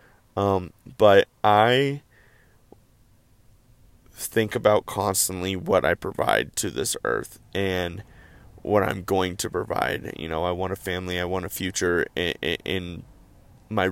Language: English